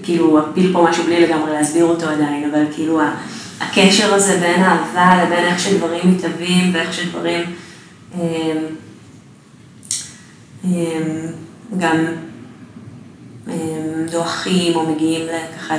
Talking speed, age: 100 wpm, 20-39